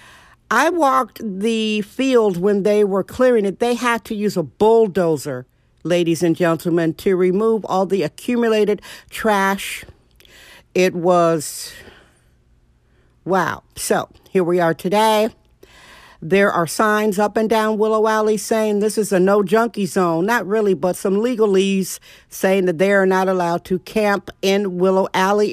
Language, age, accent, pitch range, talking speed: English, 50-69, American, 180-215 Hz, 150 wpm